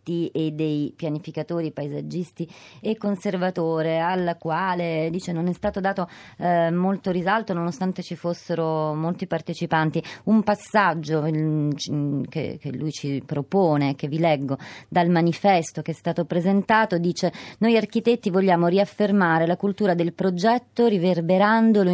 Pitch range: 155-195 Hz